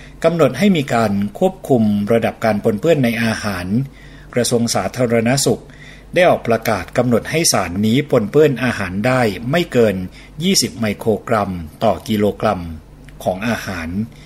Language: Thai